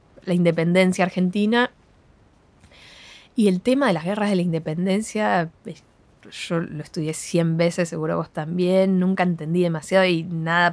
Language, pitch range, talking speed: Spanish, 180-240 Hz, 140 wpm